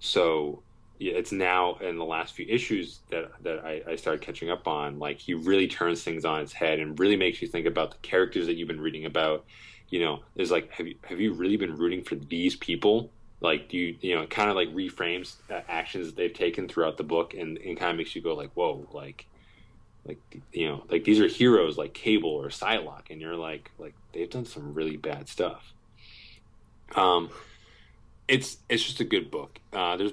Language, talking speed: English, 215 wpm